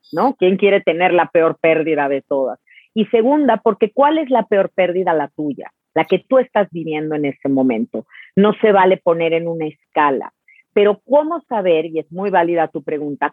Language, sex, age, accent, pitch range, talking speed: Spanish, female, 40-59, Mexican, 160-215 Hz, 195 wpm